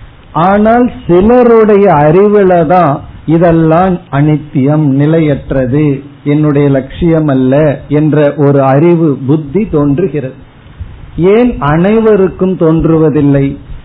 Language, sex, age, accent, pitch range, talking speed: Tamil, male, 50-69, native, 145-185 Hz, 75 wpm